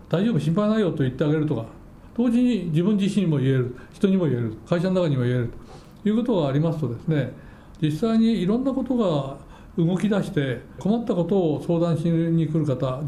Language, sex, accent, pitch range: Japanese, male, native, 135-185 Hz